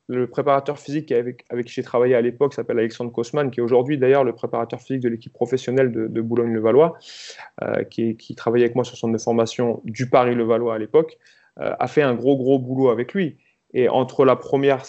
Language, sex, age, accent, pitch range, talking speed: French, male, 30-49, French, 120-145 Hz, 215 wpm